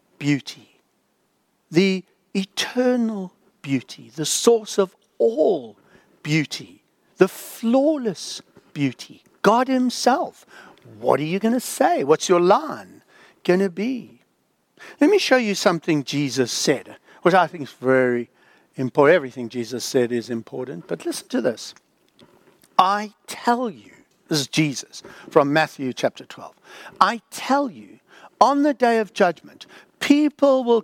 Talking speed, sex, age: 130 wpm, male, 60-79